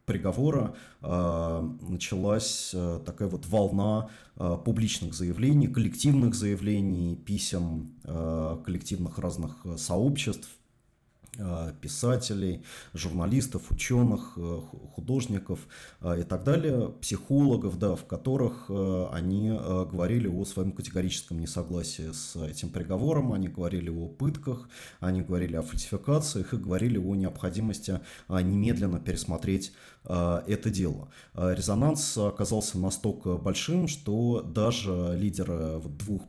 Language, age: Russian, 30-49